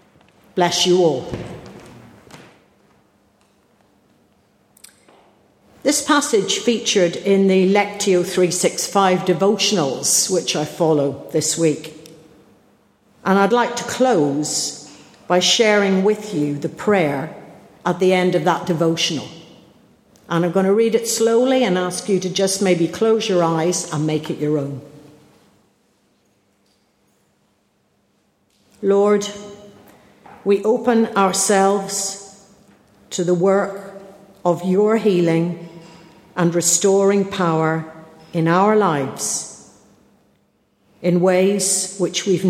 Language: English